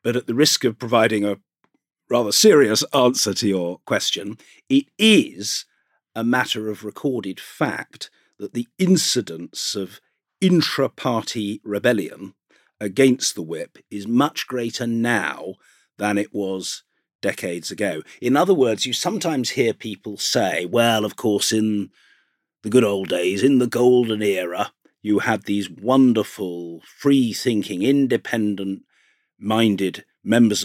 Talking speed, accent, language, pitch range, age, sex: 135 wpm, British, English, 100-125 Hz, 50-69, male